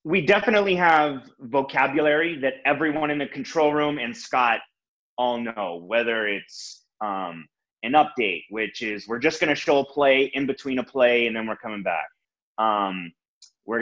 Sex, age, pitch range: male, 30-49, 115-150 Hz